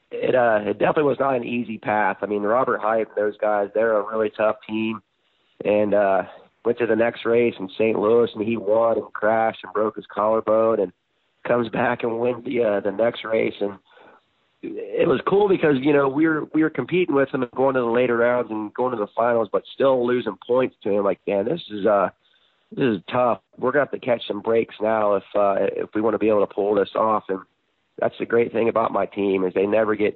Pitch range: 100-115 Hz